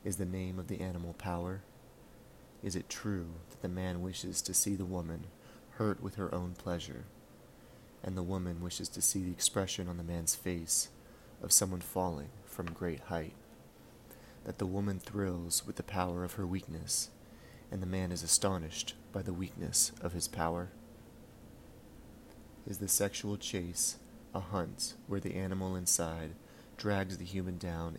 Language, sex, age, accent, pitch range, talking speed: English, male, 30-49, American, 85-100 Hz, 165 wpm